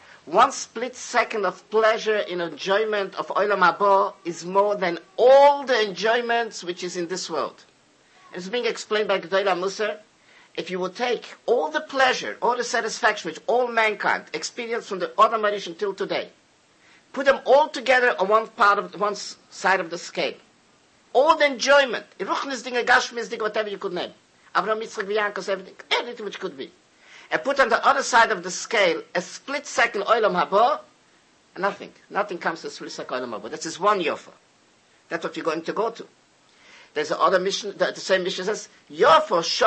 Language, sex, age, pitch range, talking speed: English, male, 50-69, 185-235 Hz, 160 wpm